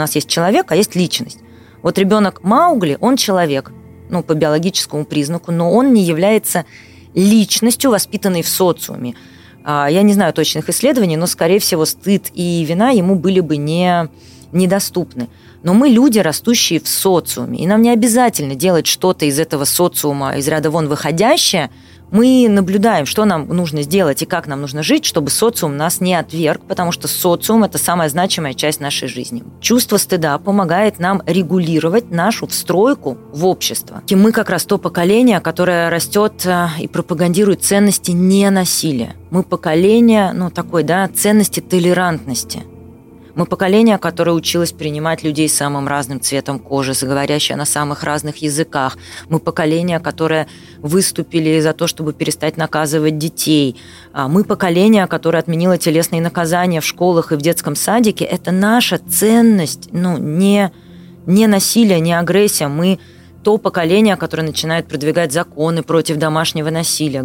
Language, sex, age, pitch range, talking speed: Russian, female, 30-49, 155-195 Hz, 150 wpm